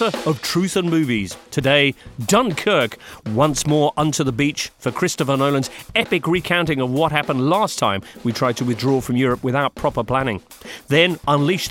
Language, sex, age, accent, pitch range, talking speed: English, male, 40-59, British, 125-175 Hz, 165 wpm